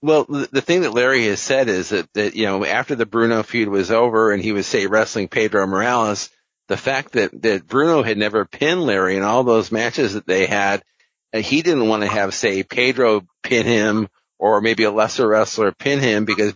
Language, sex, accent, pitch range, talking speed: English, male, American, 105-130 Hz, 210 wpm